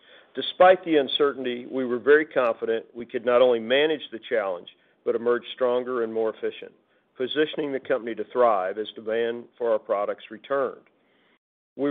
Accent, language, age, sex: American, English, 50-69, male